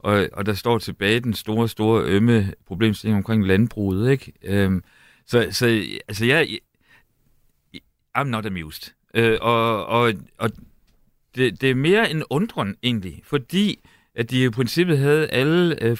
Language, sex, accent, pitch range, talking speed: Danish, male, native, 110-135 Hz, 155 wpm